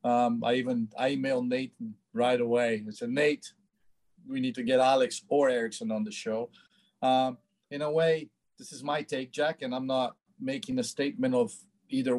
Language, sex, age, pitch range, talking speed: English, male, 50-69, 135-165 Hz, 185 wpm